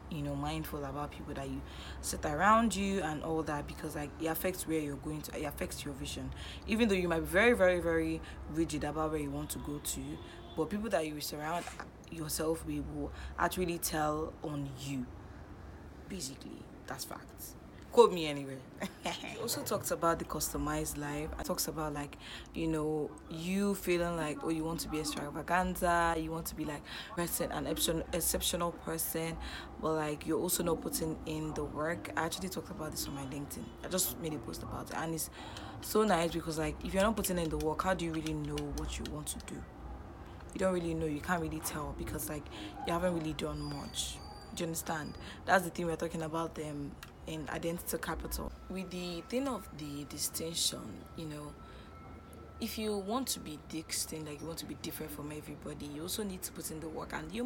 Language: English